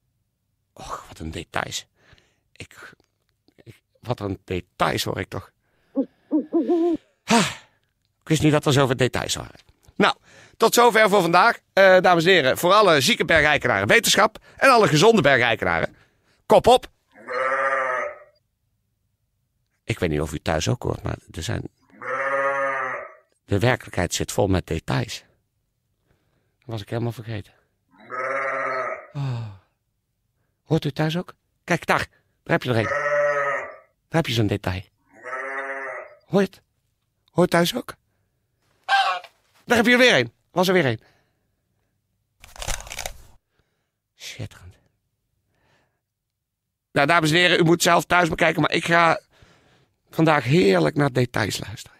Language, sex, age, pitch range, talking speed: Dutch, male, 50-69, 110-165 Hz, 125 wpm